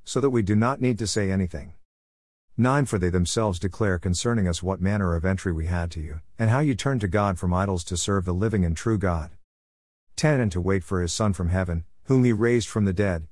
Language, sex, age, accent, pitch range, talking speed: English, male, 50-69, American, 85-115 Hz, 245 wpm